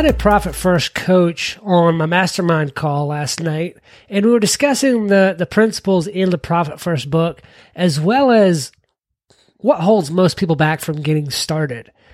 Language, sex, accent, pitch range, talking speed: English, male, American, 155-210 Hz, 175 wpm